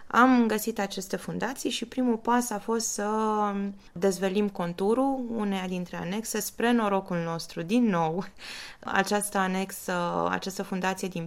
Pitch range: 175-215 Hz